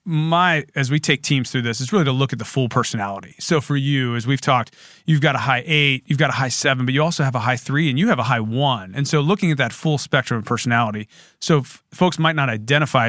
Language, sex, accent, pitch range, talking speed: English, male, American, 125-155 Hz, 265 wpm